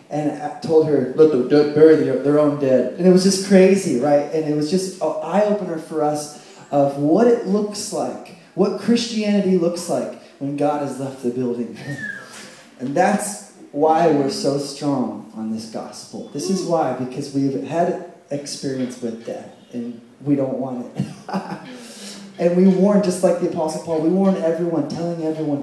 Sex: male